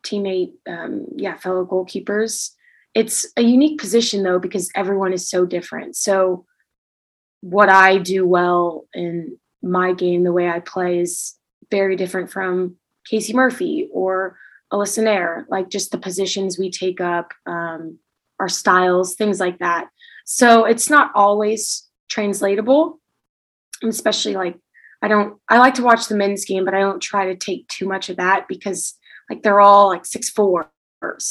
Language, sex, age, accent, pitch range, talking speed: English, female, 20-39, American, 180-220 Hz, 155 wpm